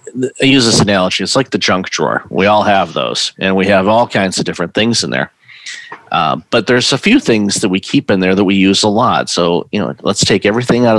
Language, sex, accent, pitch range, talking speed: English, male, American, 90-110 Hz, 250 wpm